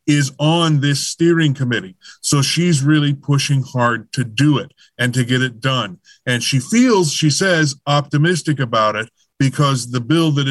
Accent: American